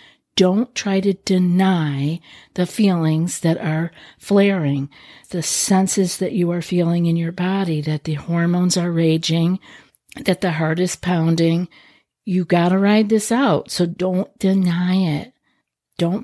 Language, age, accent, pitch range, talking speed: English, 50-69, American, 165-190 Hz, 145 wpm